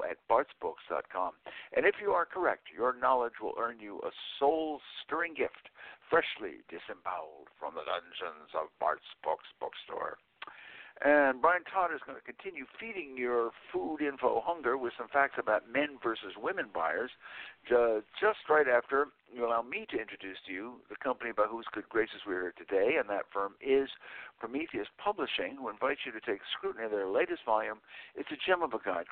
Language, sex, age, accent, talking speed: English, male, 60-79, American, 175 wpm